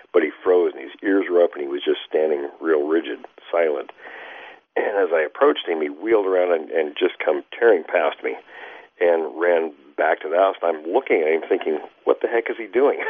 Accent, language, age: American, English, 50-69